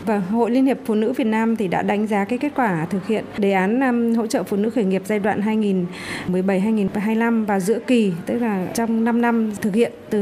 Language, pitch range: Vietnamese, 190-230 Hz